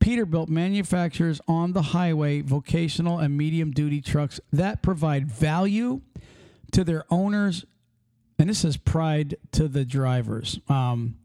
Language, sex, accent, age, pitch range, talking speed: English, male, American, 50-69, 140-185 Hz, 125 wpm